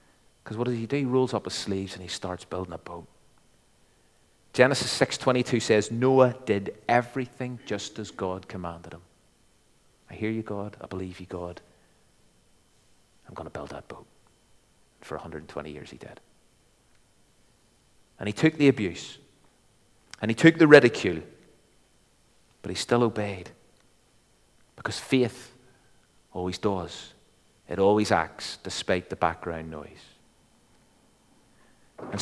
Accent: British